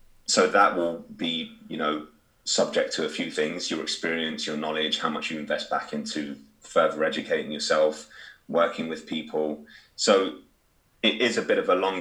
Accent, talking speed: British, 175 wpm